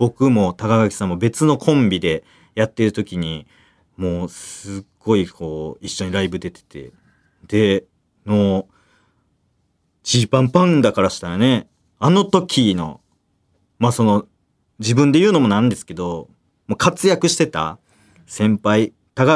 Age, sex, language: 40-59, male, Japanese